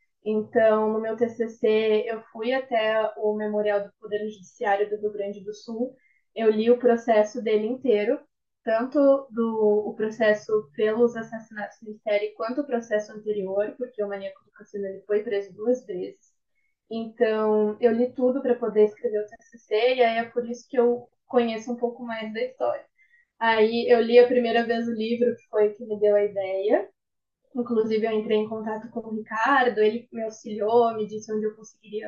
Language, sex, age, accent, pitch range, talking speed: Portuguese, female, 10-29, Brazilian, 210-245 Hz, 180 wpm